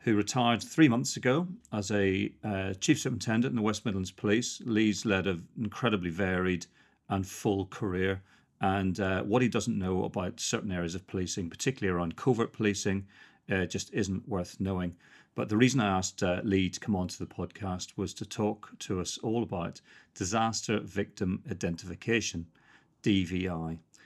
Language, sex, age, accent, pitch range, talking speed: English, male, 40-59, British, 90-110 Hz, 165 wpm